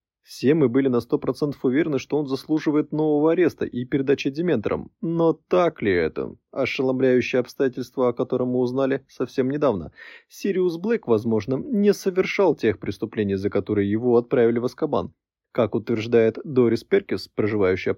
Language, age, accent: Russian, 20-39, native